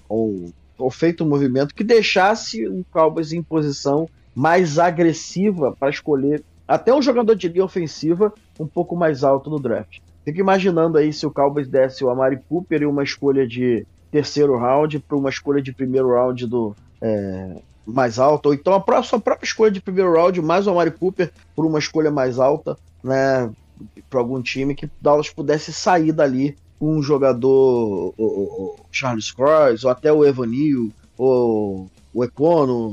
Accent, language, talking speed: Brazilian, Portuguese, 170 wpm